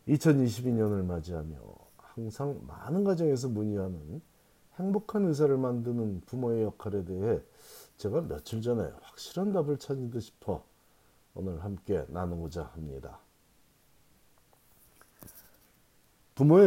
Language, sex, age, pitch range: Korean, male, 40-59, 95-135 Hz